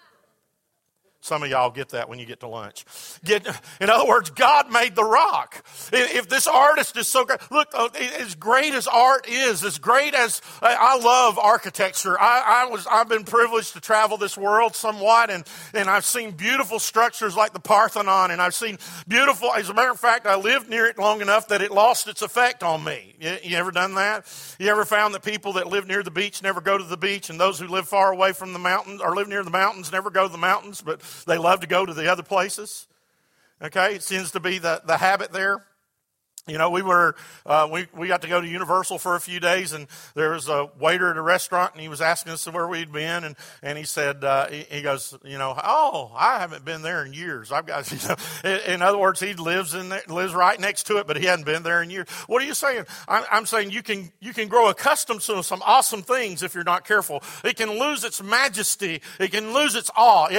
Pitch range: 175-225 Hz